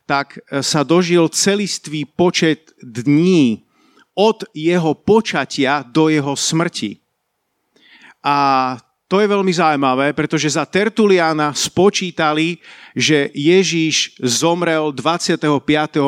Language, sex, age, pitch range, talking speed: Slovak, male, 50-69, 140-175 Hz, 95 wpm